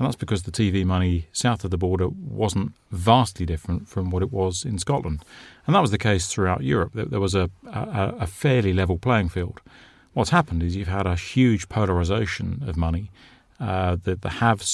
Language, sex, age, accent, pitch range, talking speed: English, male, 40-59, British, 90-110 Hz, 195 wpm